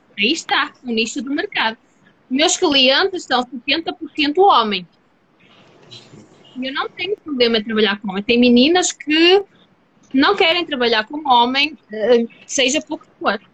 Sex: female